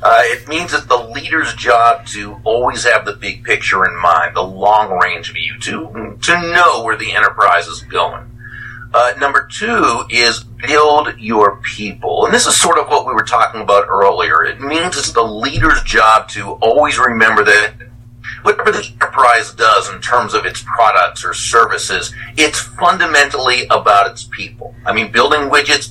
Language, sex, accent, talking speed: English, male, American, 170 wpm